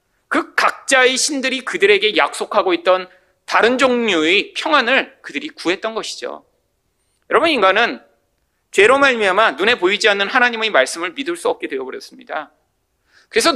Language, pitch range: Korean, 205-335 Hz